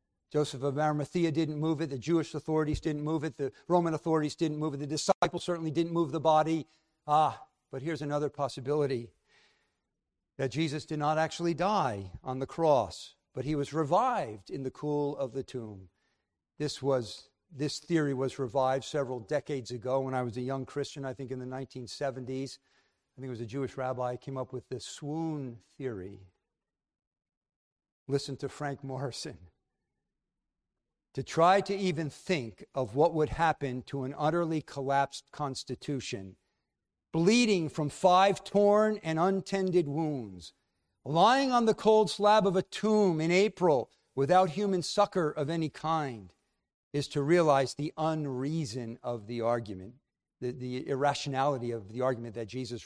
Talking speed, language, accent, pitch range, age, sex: 160 wpm, English, American, 125-160 Hz, 50-69, male